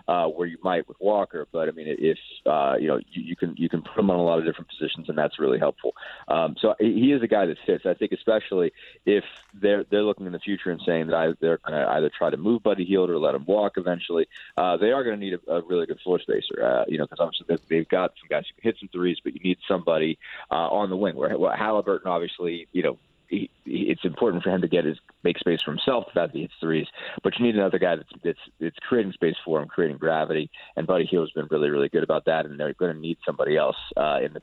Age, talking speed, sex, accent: 30-49, 270 wpm, male, American